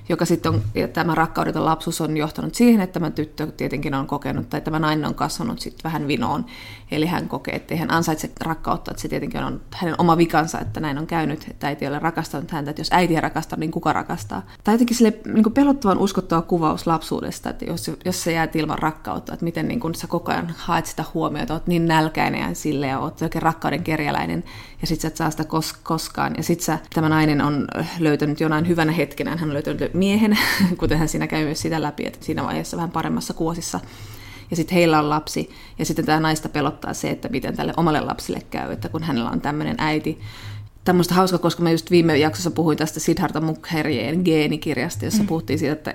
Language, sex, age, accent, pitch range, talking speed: Finnish, female, 20-39, native, 150-170 Hz, 205 wpm